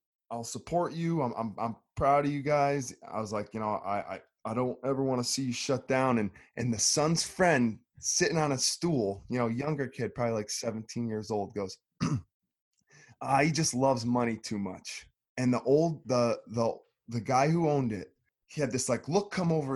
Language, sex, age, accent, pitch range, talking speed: English, male, 20-39, American, 115-145 Hz, 210 wpm